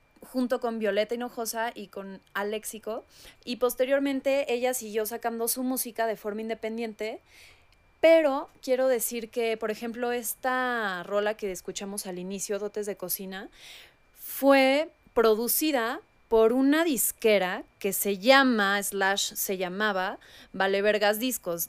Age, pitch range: 20-39, 200-245 Hz